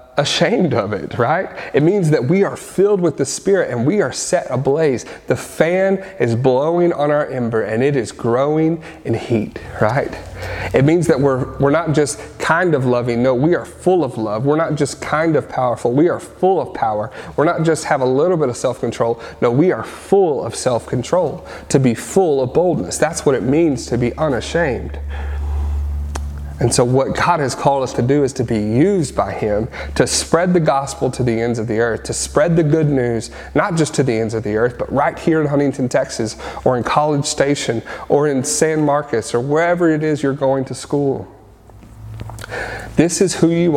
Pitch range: 115-155 Hz